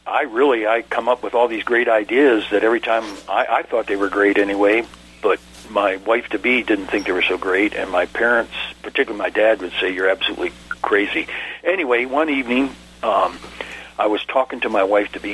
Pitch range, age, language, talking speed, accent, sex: 100-155 Hz, 60-79, English, 195 wpm, American, male